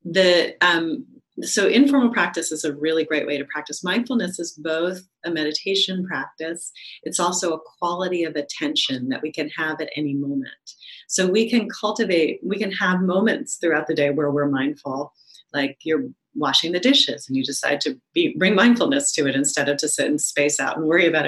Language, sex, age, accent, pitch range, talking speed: English, female, 30-49, American, 150-185 Hz, 195 wpm